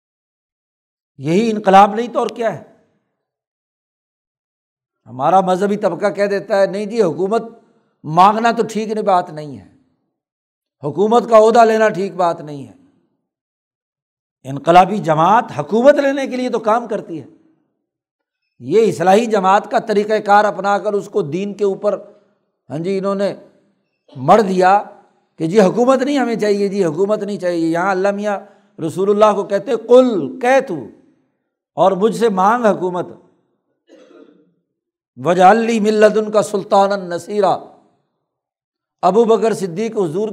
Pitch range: 185-225 Hz